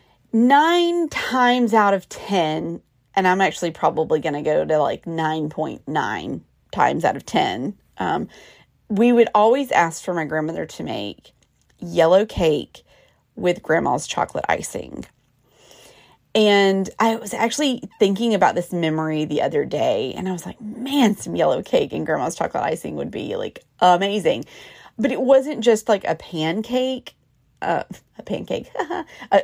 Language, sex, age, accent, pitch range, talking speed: English, female, 30-49, American, 175-235 Hz, 150 wpm